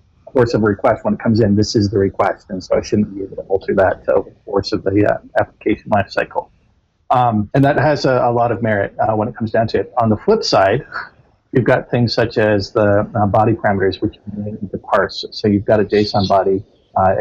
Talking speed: 250 wpm